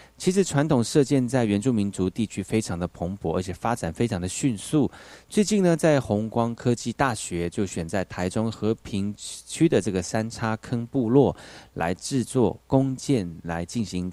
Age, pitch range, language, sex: 30-49, 95-130 Hz, Chinese, male